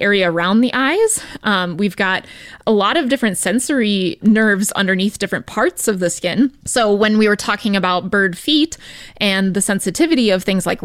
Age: 20-39